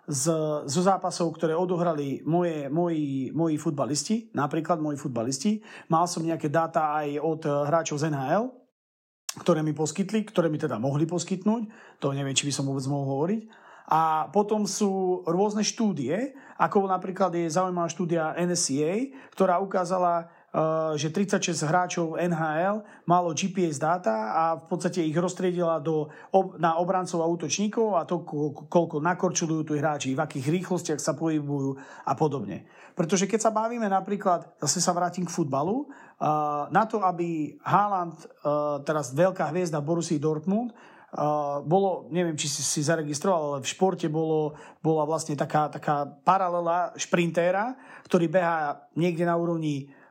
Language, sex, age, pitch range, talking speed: Slovak, male, 30-49, 150-185 Hz, 145 wpm